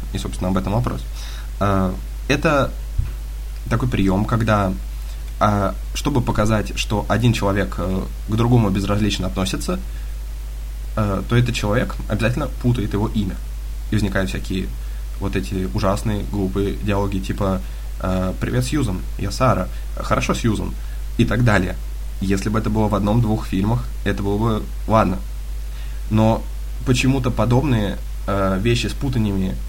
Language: Russian